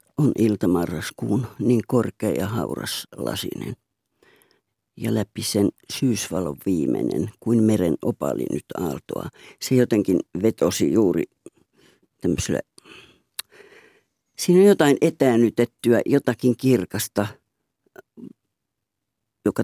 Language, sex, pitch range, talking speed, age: Finnish, female, 110-135 Hz, 90 wpm, 60-79